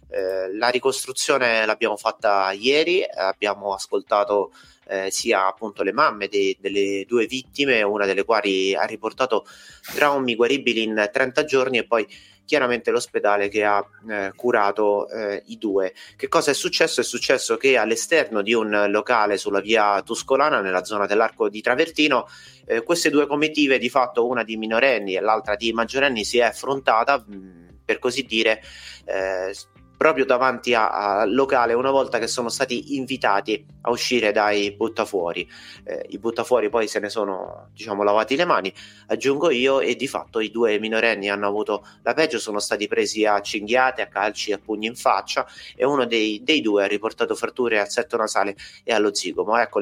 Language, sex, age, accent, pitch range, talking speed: Italian, male, 30-49, native, 105-135 Hz, 170 wpm